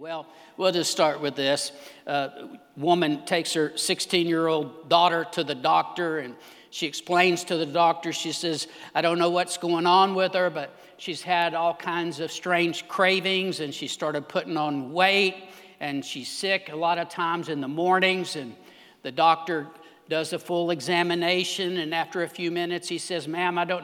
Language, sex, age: English, male, 60-79